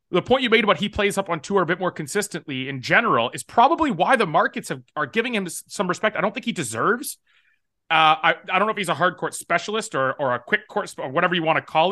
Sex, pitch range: male, 150-205 Hz